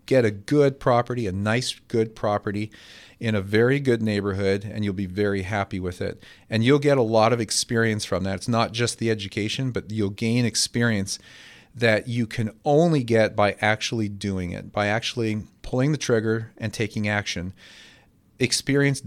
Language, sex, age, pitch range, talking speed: English, male, 40-59, 105-125 Hz, 175 wpm